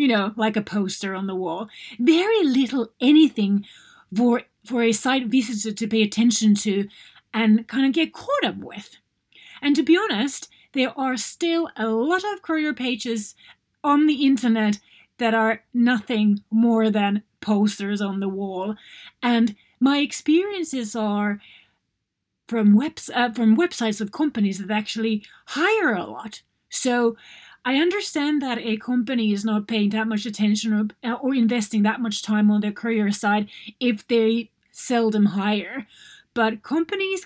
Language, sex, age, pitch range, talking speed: English, female, 30-49, 215-270 Hz, 155 wpm